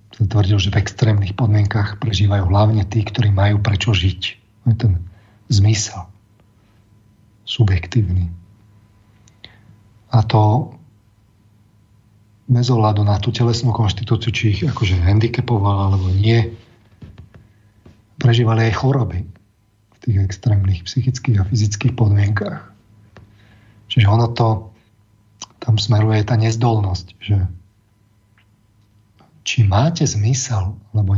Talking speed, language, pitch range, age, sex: 100 wpm, Slovak, 105-115 Hz, 40-59, male